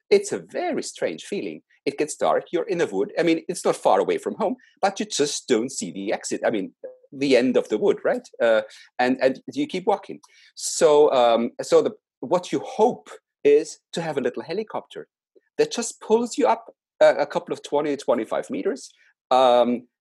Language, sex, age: English, male, 40-59